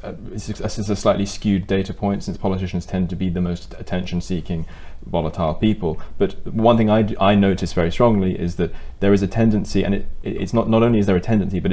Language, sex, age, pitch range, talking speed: English, male, 20-39, 85-100 Hz, 225 wpm